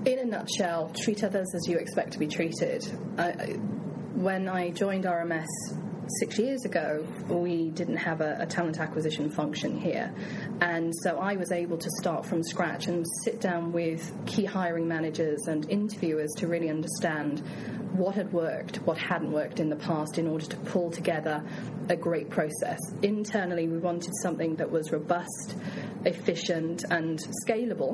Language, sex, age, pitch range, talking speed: English, female, 30-49, 170-205 Hz, 160 wpm